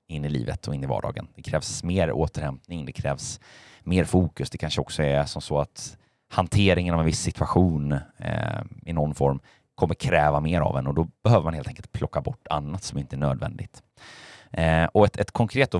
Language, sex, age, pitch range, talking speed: Swedish, male, 30-49, 75-100 Hz, 200 wpm